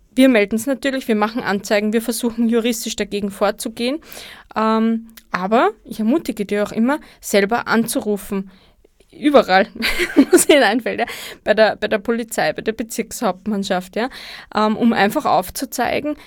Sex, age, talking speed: female, 20-39, 120 wpm